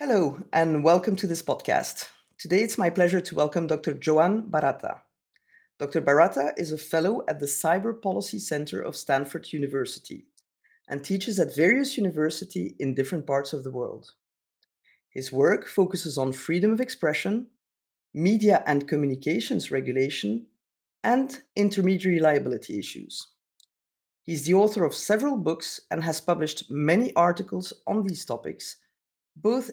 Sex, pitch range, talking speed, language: female, 145-205 Hz, 140 wpm, English